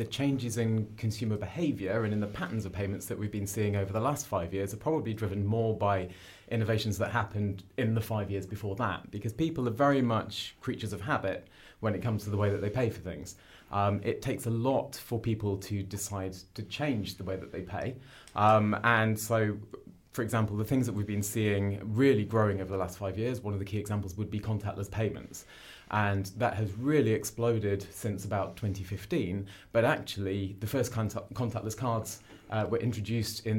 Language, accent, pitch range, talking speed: English, British, 100-115 Hz, 205 wpm